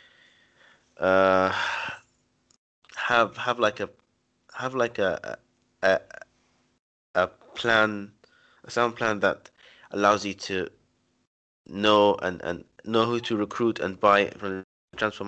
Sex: male